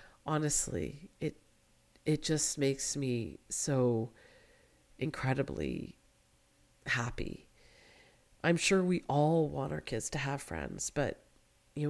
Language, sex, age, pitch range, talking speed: English, female, 50-69, 140-180 Hz, 105 wpm